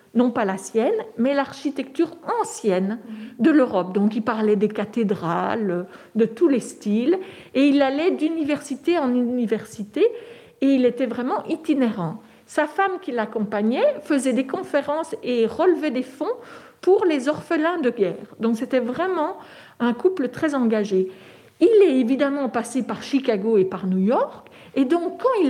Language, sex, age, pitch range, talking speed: French, female, 50-69, 220-310 Hz, 155 wpm